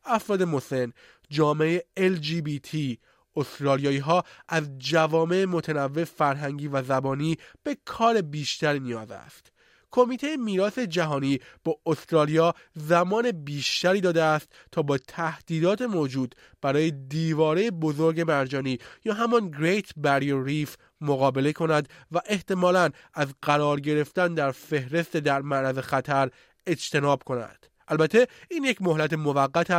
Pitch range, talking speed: 140-180 Hz, 120 wpm